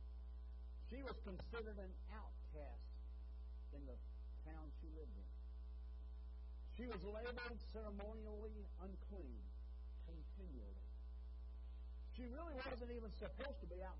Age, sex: 60-79, male